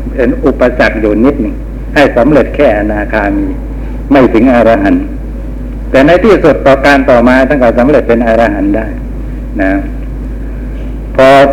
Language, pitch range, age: Thai, 115-135 Hz, 60-79